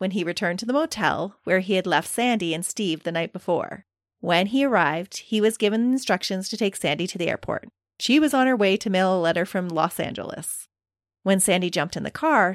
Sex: female